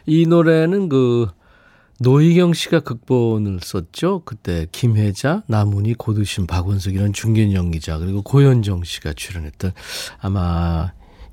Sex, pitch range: male, 95-140 Hz